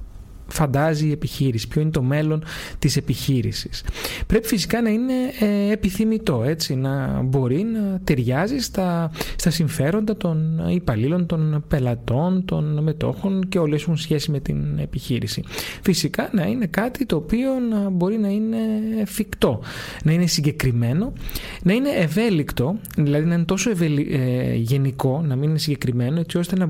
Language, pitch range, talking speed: Greek, 135-190 Hz, 150 wpm